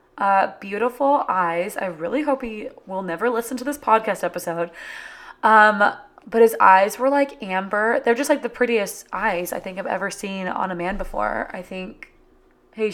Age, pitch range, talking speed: 20-39, 185-245 Hz, 180 wpm